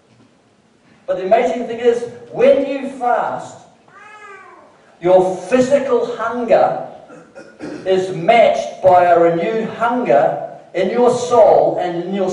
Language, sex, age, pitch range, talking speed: English, male, 50-69, 160-240 Hz, 110 wpm